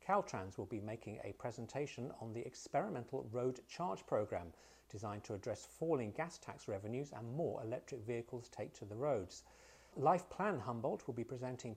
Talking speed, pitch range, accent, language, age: 170 wpm, 110-155 Hz, British, English, 40-59